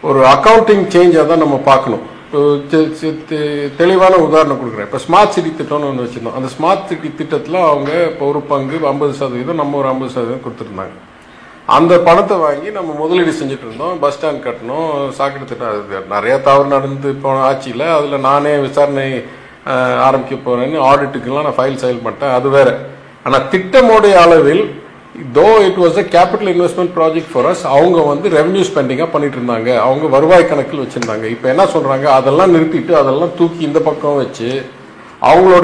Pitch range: 135-170 Hz